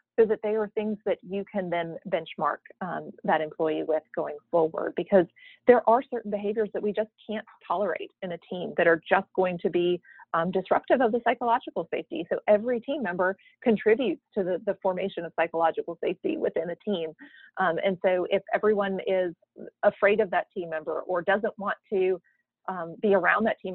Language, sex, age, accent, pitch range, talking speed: English, female, 30-49, American, 175-225 Hz, 190 wpm